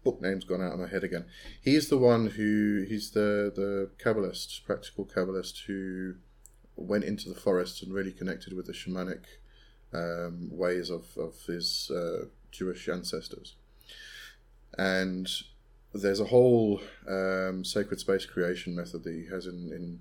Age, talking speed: 30-49, 155 wpm